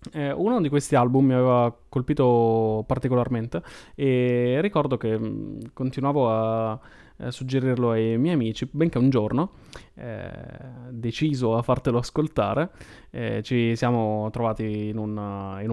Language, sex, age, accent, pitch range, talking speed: Italian, male, 20-39, native, 110-135 Hz, 120 wpm